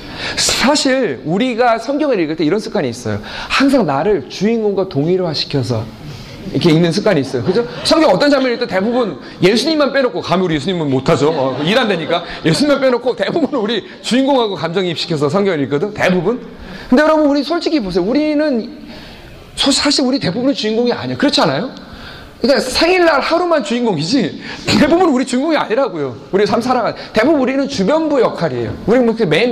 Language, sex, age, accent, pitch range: Korean, male, 40-59, native, 170-265 Hz